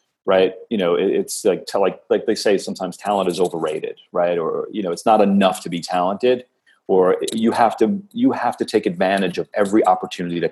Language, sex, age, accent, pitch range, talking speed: English, male, 30-49, American, 90-140 Hz, 205 wpm